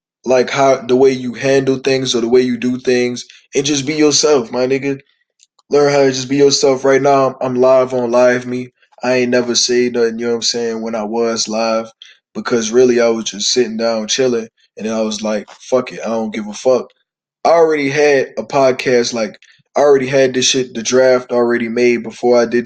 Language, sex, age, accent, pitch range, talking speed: English, male, 20-39, American, 115-130 Hz, 220 wpm